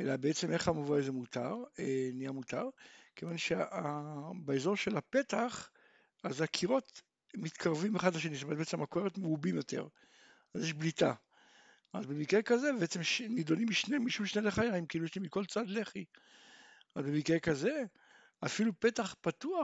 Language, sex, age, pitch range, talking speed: Hebrew, male, 60-79, 150-230 Hz, 140 wpm